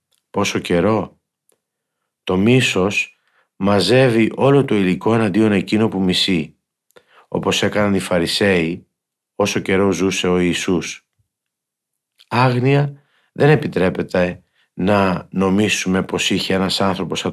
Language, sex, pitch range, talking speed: Greek, male, 90-115 Hz, 105 wpm